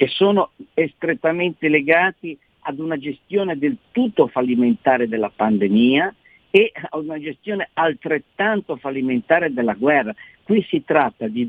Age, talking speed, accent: 50-69, 125 wpm, native